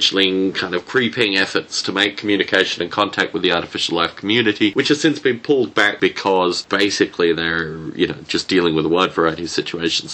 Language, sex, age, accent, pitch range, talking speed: English, male, 20-39, Australian, 90-110 Hz, 195 wpm